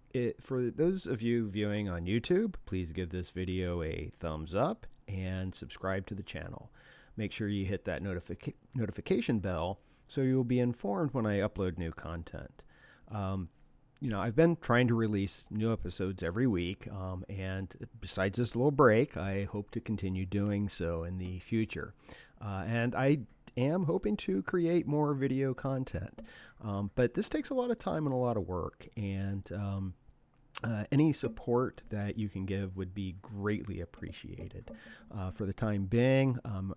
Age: 40-59